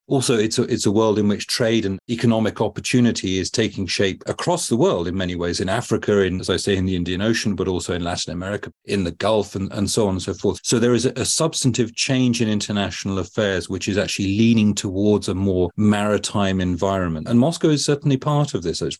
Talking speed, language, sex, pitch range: 235 wpm, English, male, 95-120 Hz